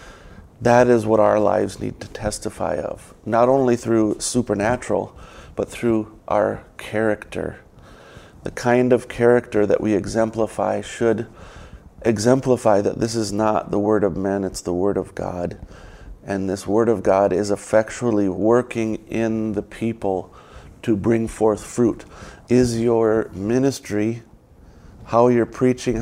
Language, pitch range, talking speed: English, 100-120 Hz, 140 wpm